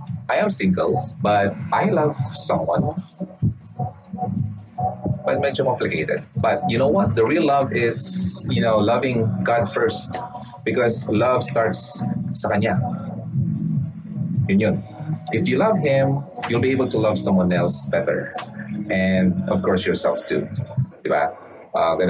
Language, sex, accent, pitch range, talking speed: Filipino, male, native, 100-145 Hz, 135 wpm